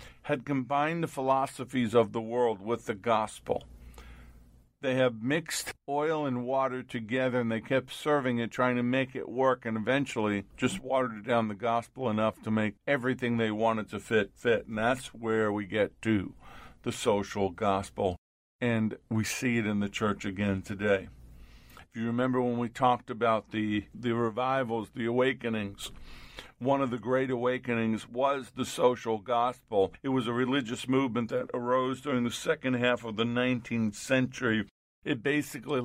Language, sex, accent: English, male, American